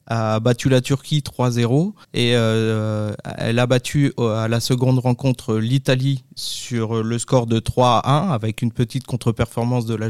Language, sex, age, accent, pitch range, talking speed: French, male, 20-39, French, 115-135 Hz, 165 wpm